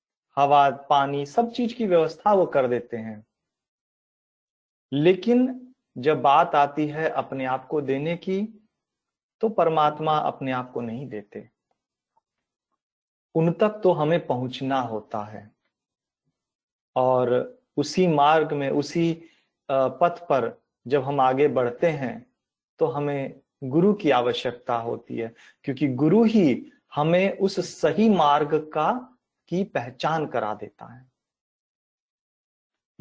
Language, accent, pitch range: Hindi, native, 135-170 Hz